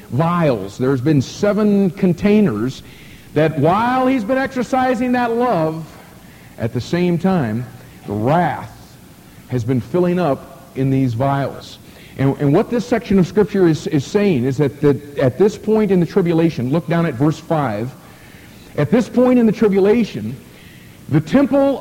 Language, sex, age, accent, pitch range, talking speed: English, male, 50-69, American, 145-210 Hz, 155 wpm